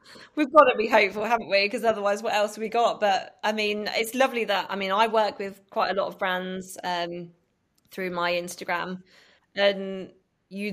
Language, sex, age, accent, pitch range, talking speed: English, female, 20-39, British, 180-225 Hz, 200 wpm